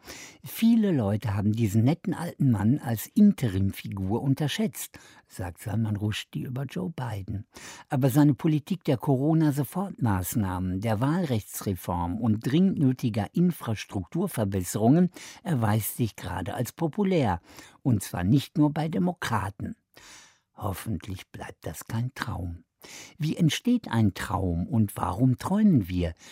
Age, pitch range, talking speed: 60-79, 100-150 Hz, 115 wpm